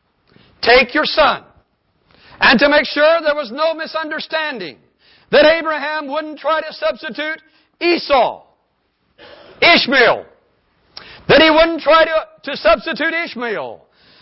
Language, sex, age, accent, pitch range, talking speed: English, male, 60-79, American, 265-330 Hz, 115 wpm